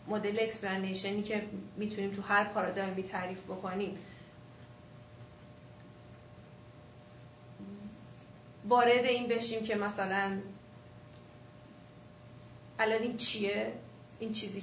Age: 30-49